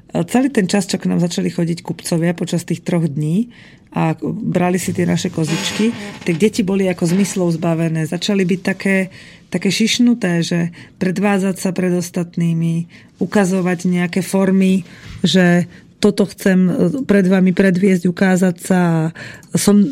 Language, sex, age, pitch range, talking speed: Slovak, female, 30-49, 175-205 Hz, 140 wpm